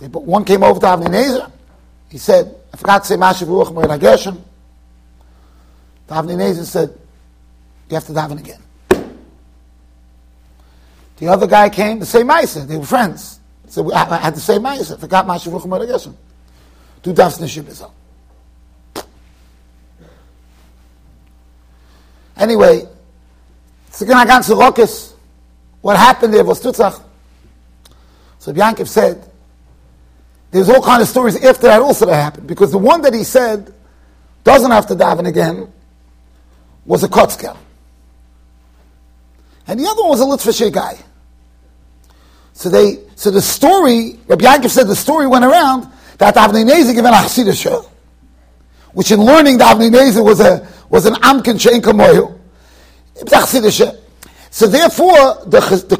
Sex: male